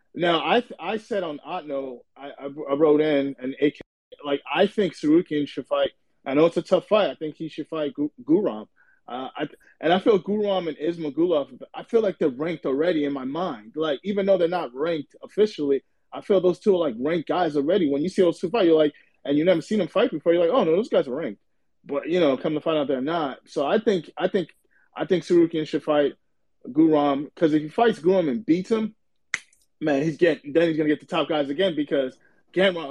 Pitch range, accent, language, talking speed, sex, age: 145-185 Hz, American, English, 235 wpm, male, 20-39